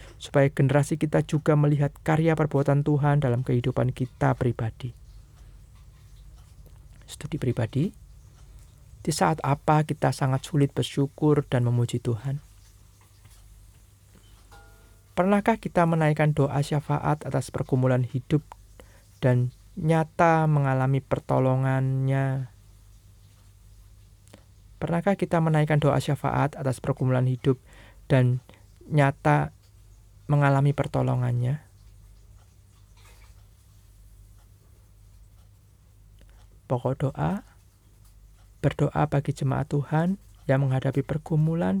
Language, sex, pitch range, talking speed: Indonesian, male, 100-150 Hz, 80 wpm